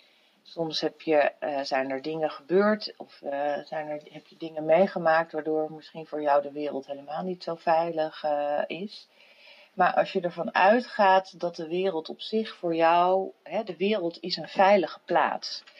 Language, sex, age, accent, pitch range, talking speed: Dutch, female, 40-59, Dutch, 150-210 Hz, 180 wpm